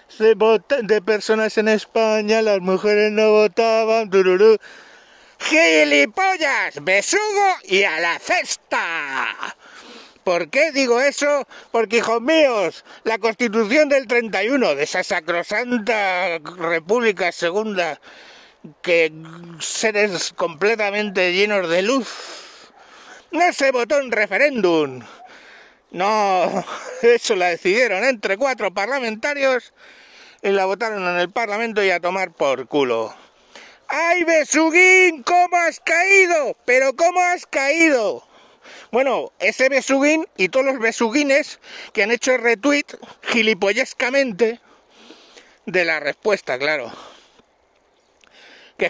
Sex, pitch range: male, 200-285 Hz